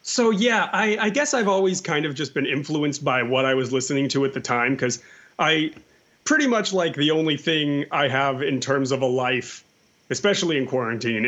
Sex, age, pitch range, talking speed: male, 30-49, 130-170 Hz, 205 wpm